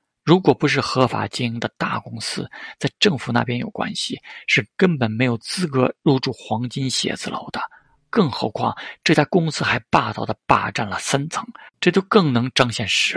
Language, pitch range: Chinese, 120-160 Hz